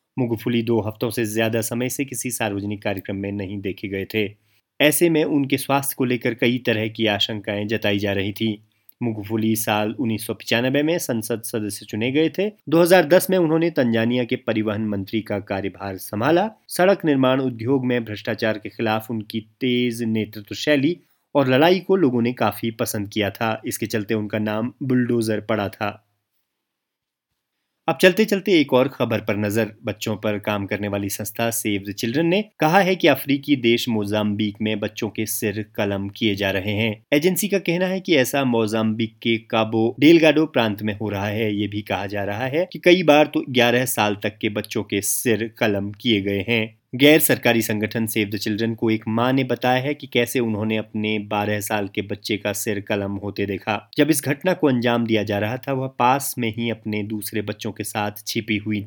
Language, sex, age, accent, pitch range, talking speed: Hindi, male, 30-49, native, 105-130 Hz, 190 wpm